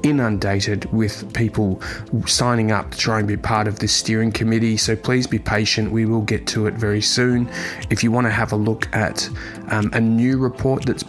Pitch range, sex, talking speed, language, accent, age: 105-115 Hz, male, 205 wpm, English, Australian, 20-39